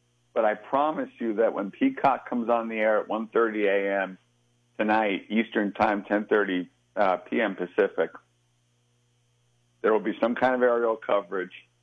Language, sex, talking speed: English, male, 145 wpm